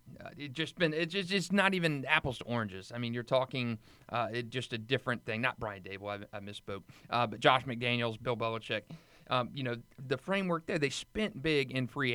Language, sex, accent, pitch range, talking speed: English, male, American, 120-150 Hz, 215 wpm